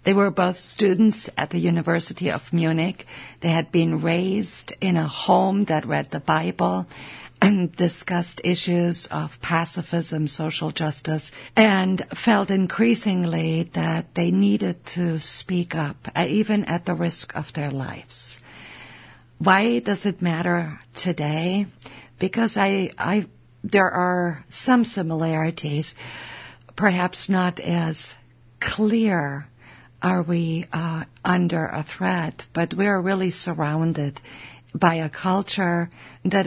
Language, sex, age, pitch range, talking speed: English, female, 60-79, 155-185 Hz, 120 wpm